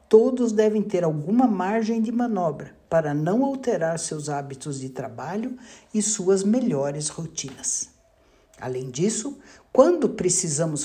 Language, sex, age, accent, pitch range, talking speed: Portuguese, male, 60-79, Brazilian, 155-225 Hz, 120 wpm